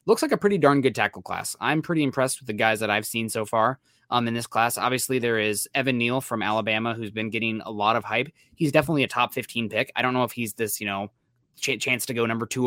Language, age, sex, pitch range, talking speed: English, 20-39, male, 105-125 Hz, 265 wpm